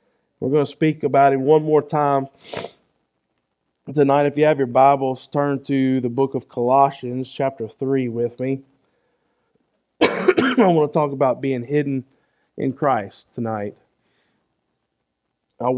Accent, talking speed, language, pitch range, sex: American, 135 wpm, English, 125-145 Hz, male